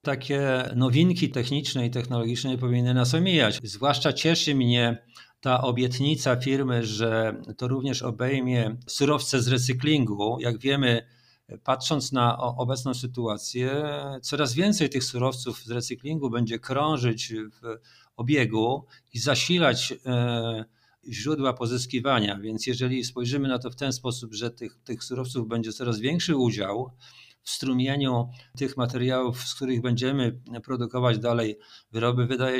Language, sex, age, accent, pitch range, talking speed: Polish, male, 50-69, native, 120-135 Hz, 125 wpm